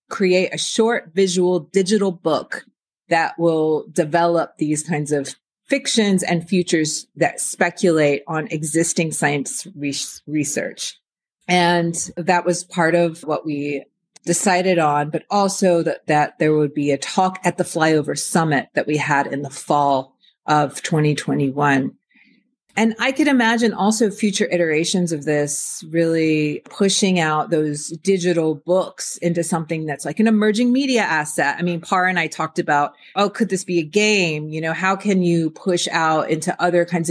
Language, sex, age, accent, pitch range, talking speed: English, female, 40-59, American, 155-190 Hz, 155 wpm